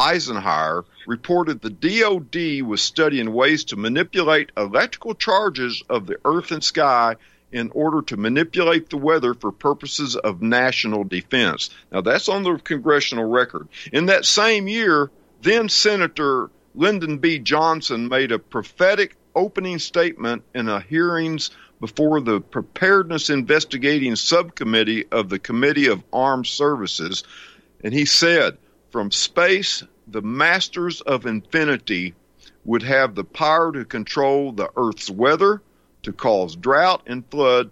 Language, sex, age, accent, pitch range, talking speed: English, male, 50-69, American, 115-170 Hz, 130 wpm